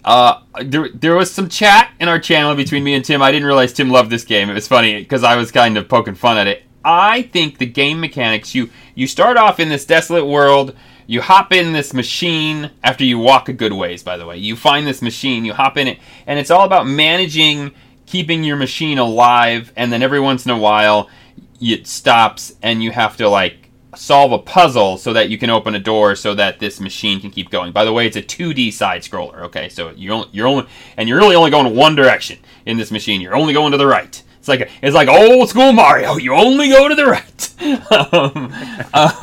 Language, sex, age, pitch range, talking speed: English, male, 30-49, 120-165 Hz, 230 wpm